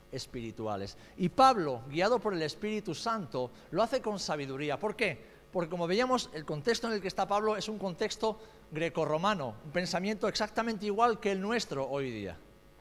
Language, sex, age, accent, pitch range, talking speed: Spanish, male, 50-69, Spanish, 165-225 Hz, 175 wpm